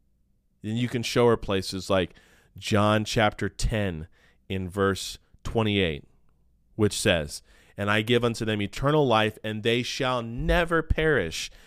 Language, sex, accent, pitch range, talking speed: English, male, American, 100-140 Hz, 140 wpm